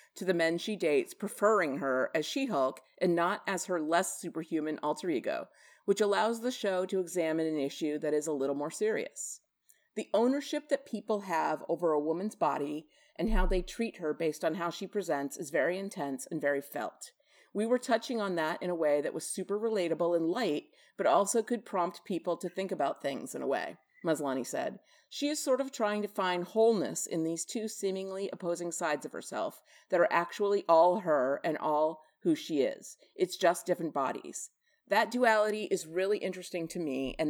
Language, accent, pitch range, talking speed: English, American, 160-215 Hz, 195 wpm